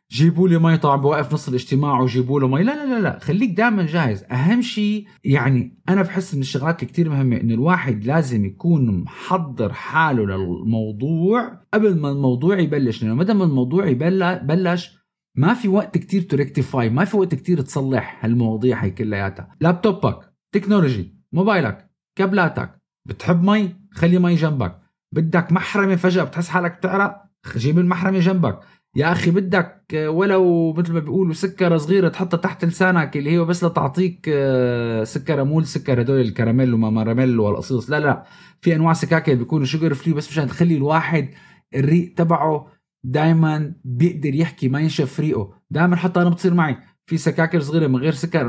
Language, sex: Arabic, male